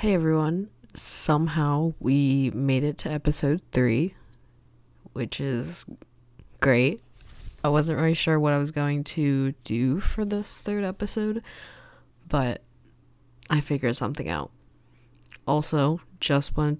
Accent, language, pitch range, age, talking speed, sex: American, English, 130-160 Hz, 20-39, 120 wpm, female